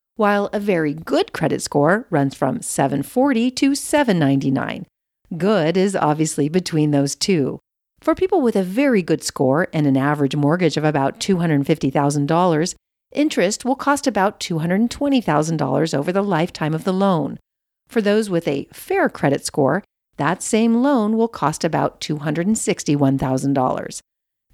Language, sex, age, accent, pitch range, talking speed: English, female, 50-69, American, 150-235 Hz, 135 wpm